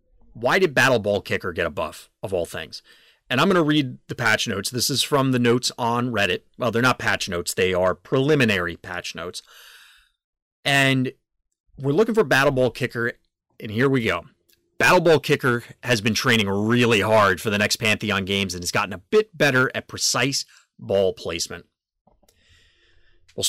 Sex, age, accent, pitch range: male, 30-49, American, 105-145 Hz